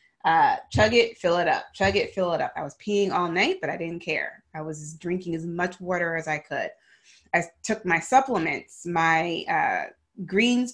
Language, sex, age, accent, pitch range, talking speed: English, female, 20-39, American, 165-205 Hz, 200 wpm